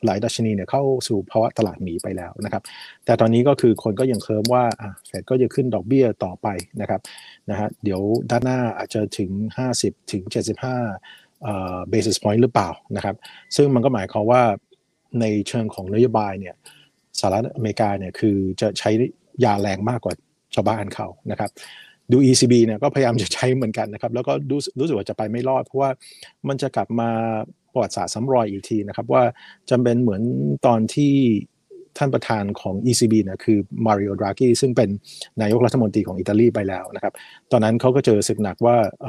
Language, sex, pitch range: Thai, male, 105-125 Hz